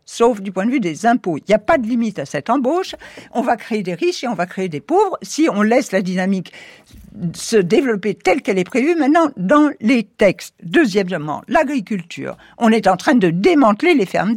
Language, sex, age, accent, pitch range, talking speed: French, female, 60-79, French, 210-310 Hz, 215 wpm